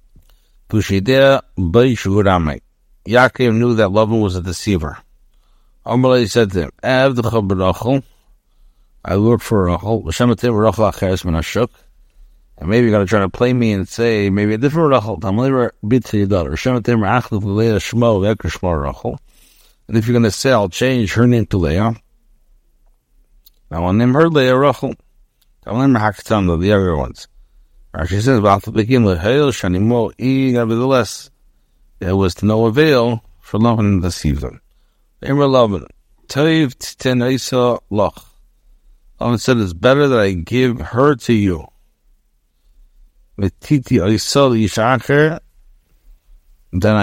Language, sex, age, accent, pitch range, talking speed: English, male, 60-79, American, 95-125 Hz, 110 wpm